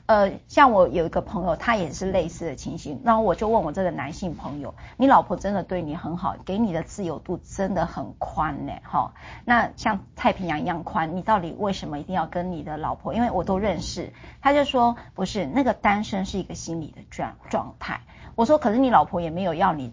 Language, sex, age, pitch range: Chinese, female, 30-49, 170-230 Hz